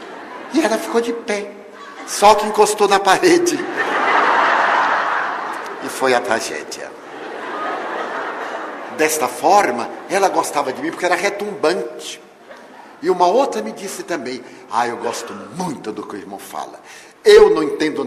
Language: Portuguese